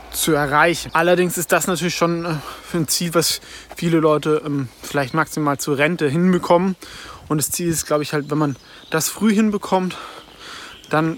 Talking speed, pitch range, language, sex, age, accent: 165 wpm, 145-175 Hz, German, male, 20-39, German